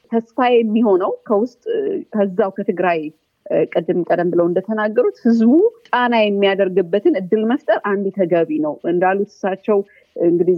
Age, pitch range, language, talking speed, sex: 30-49, 185-235 Hz, Amharic, 110 wpm, female